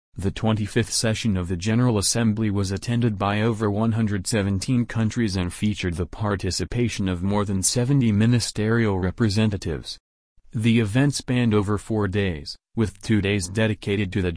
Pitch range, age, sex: 95-115 Hz, 40-59, male